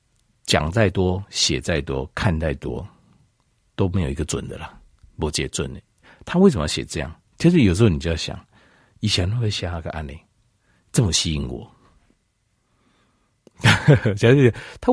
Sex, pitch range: male, 80-115 Hz